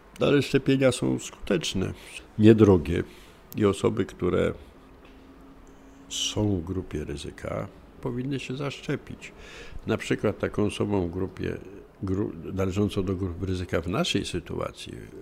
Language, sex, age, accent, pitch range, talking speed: Polish, male, 60-79, native, 85-110 Hz, 110 wpm